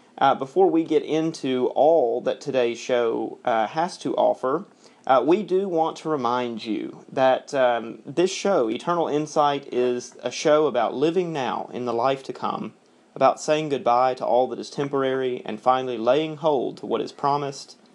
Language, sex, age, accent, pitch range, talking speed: English, male, 30-49, American, 125-155 Hz, 175 wpm